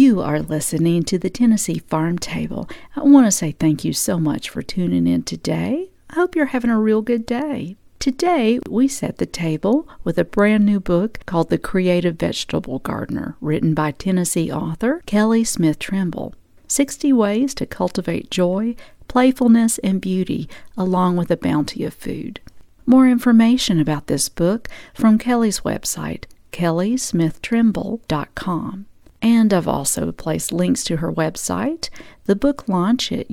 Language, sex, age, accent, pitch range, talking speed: English, female, 50-69, American, 170-240 Hz, 150 wpm